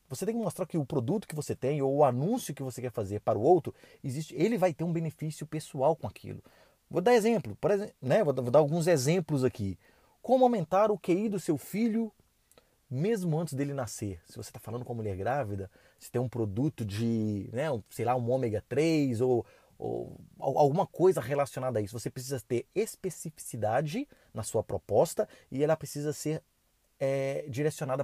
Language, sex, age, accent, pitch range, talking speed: Portuguese, male, 30-49, Brazilian, 125-175 Hz, 200 wpm